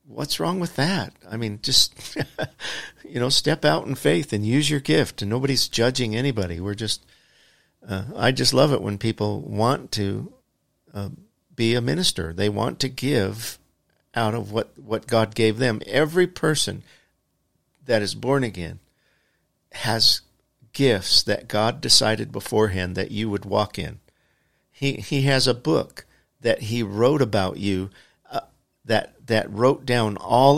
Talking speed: 155 wpm